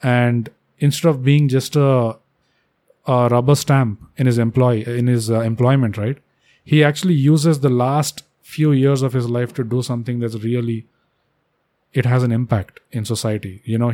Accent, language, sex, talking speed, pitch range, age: Indian, English, male, 170 wpm, 115-135 Hz, 30-49